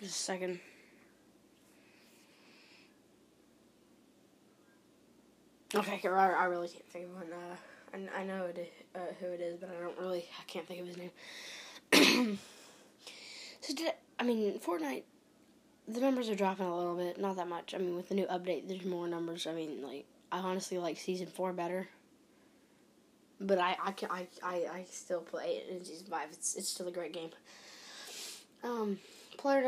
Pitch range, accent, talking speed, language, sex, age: 180-235 Hz, American, 170 wpm, English, female, 10-29